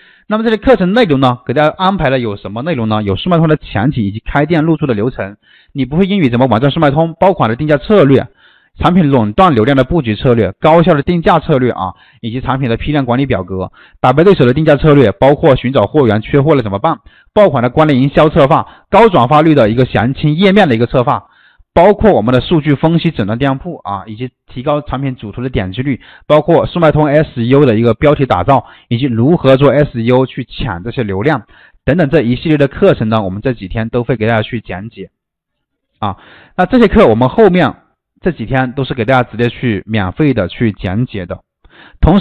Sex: male